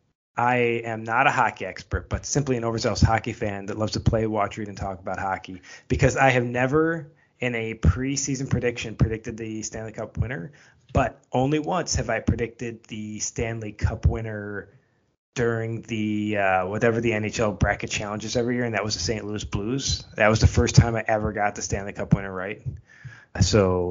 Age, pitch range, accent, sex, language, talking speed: 20-39, 105-130 Hz, American, male, English, 190 wpm